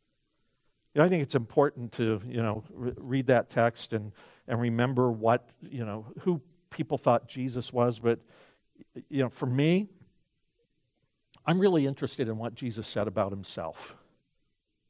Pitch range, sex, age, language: 115-145 Hz, male, 50-69, English